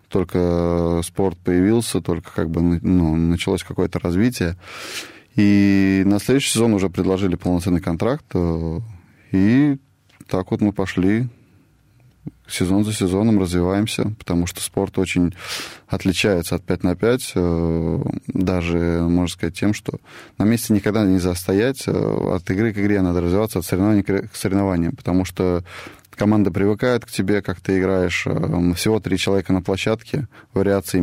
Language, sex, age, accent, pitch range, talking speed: Russian, male, 20-39, native, 90-105 Hz, 135 wpm